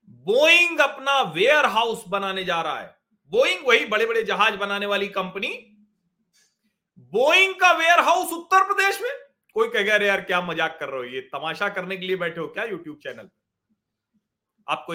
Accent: native